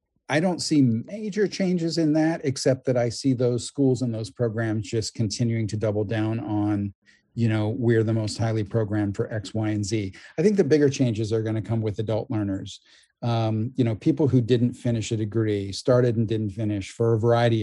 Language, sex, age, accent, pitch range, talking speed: English, male, 40-59, American, 110-135 Hz, 210 wpm